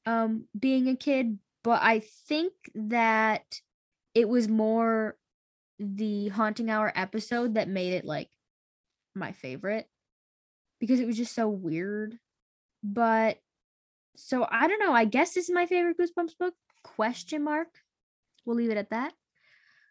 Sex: female